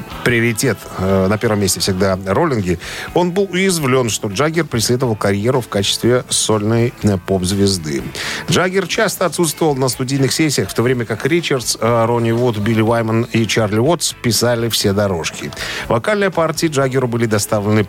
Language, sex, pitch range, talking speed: Russian, male, 105-140 Hz, 145 wpm